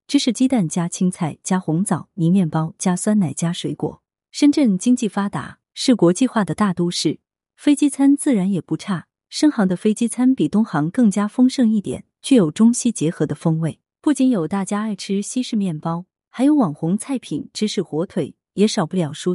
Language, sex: Chinese, female